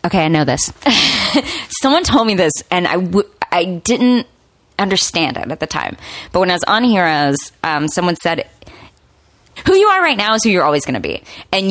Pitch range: 165-230 Hz